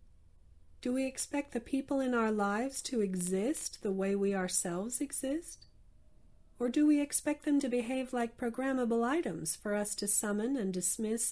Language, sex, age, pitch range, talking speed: English, female, 40-59, 195-255 Hz, 165 wpm